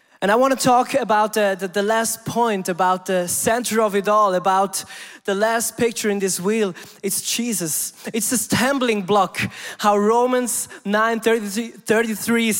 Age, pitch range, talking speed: 20-39, 200-235 Hz, 160 wpm